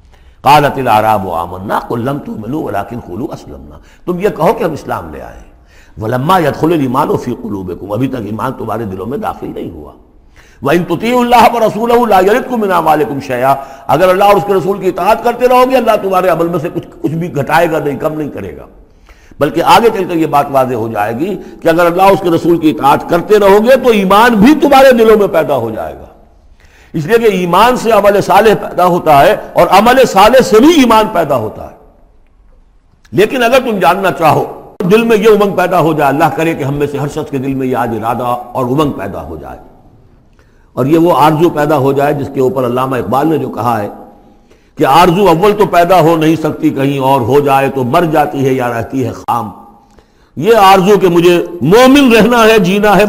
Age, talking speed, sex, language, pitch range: 60-79, 225 wpm, male, Urdu, 130-200 Hz